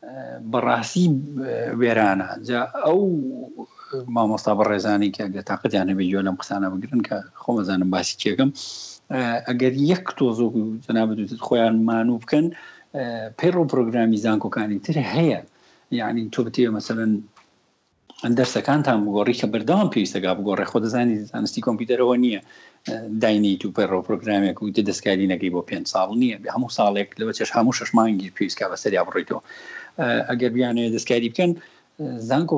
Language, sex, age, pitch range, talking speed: Arabic, male, 50-69, 105-135 Hz, 135 wpm